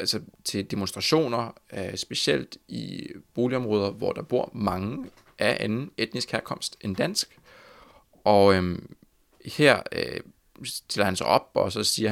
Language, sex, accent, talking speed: Danish, male, native, 135 wpm